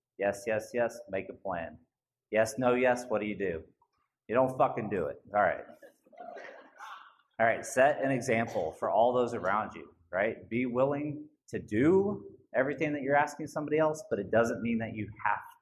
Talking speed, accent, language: 185 wpm, American, English